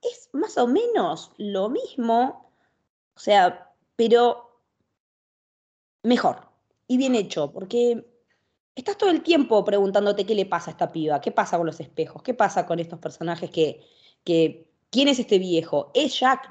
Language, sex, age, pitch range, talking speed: Spanish, female, 20-39, 185-245 Hz, 155 wpm